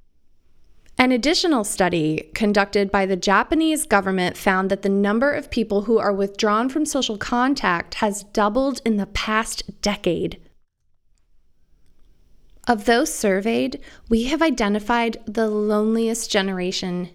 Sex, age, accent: female, 20-39, American